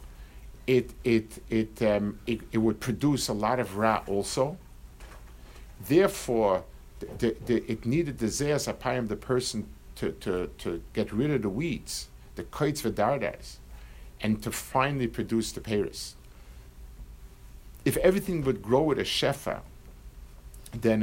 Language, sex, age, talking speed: English, male, 50-69, 135 wpm